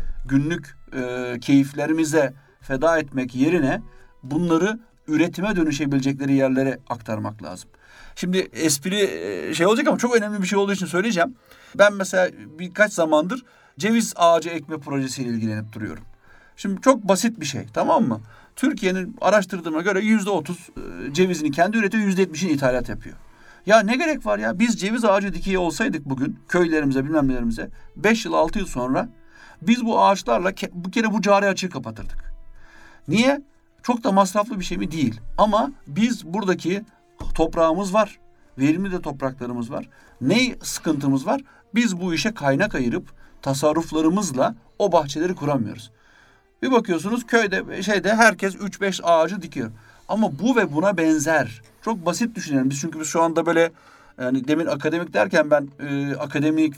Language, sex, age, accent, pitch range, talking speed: Turkish, male, 50-69, native, 140-200 Hz, 145 wpm